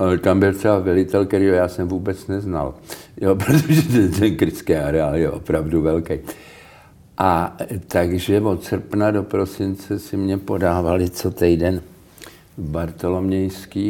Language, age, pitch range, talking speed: Czech, 60-79, 85-100 Hz, 135 wpm